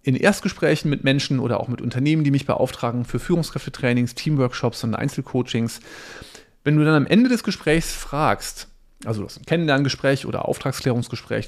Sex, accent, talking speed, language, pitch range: male, German, 150 wpm, German, 125-160 Hz